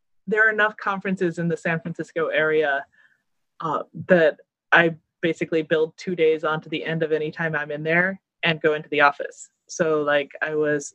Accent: American